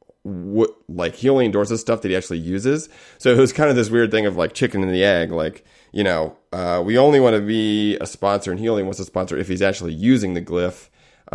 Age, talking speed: 30-49, 250 wpm